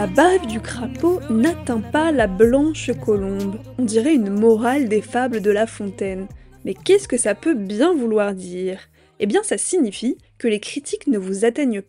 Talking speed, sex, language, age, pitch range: 180 wpm, female, French, 20-39, 210-260 Hz